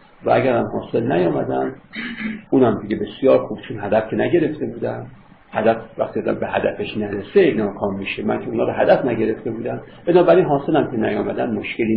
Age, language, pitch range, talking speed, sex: 50-69, Persian, 115-180 Hz, 165 wpm, male